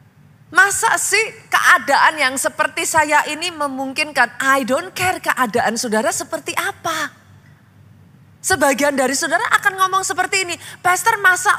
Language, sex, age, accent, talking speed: Indonesian, female, 20-39, native, 125 wpm